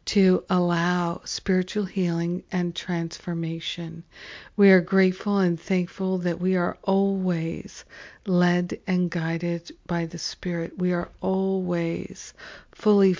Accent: American